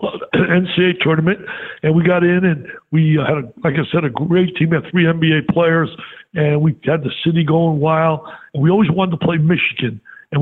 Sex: male